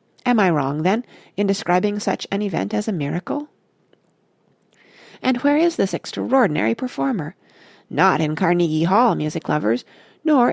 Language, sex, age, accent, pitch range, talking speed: English, female, 40-59, American, 160-230 Hz, 140 wpm